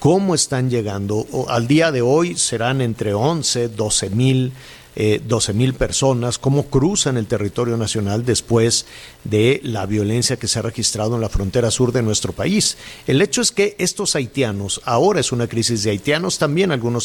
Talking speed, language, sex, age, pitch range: 180 wpm, Spanish, male, 50-69, 110-135 Hz